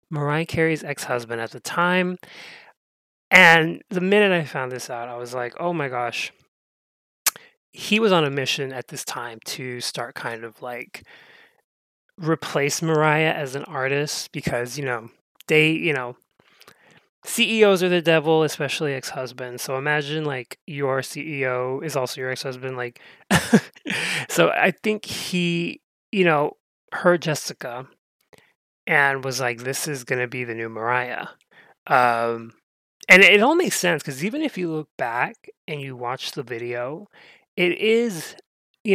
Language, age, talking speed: English, 20-39, 150 wpm